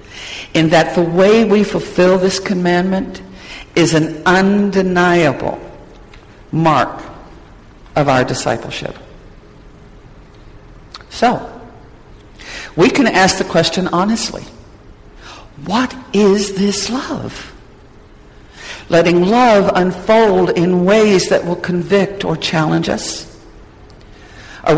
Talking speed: 90 wpm